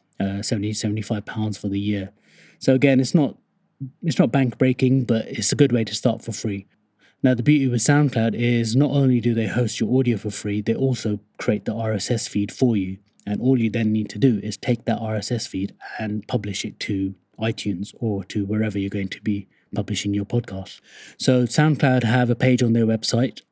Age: 30-49